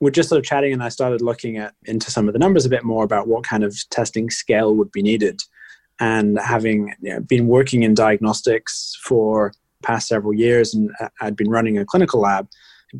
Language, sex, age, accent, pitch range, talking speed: English, male, 20-39, British, 105-125 Hz, 220 wpm